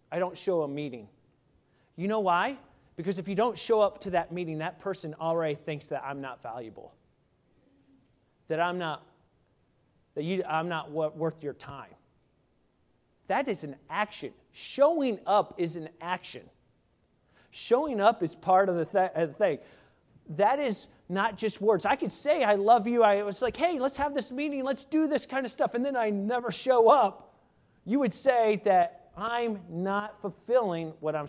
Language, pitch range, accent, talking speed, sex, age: English, 155-210 Hz, American, 180 wpm, male, 30-49